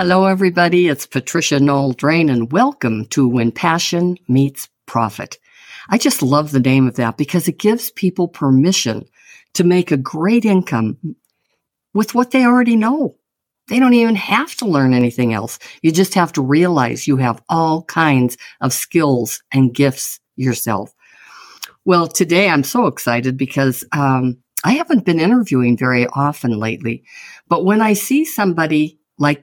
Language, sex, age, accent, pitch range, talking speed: English, female, 50-69, American, 130-185 Hz, 155 wpm